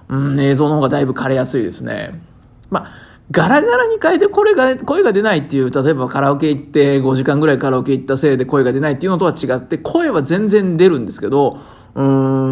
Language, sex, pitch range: Japanese, male, 130-155 Hz